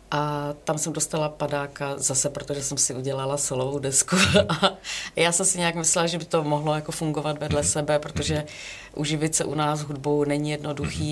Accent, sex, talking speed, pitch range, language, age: native, female, 185 wpm, 140-155 Hz, Czech, 30-49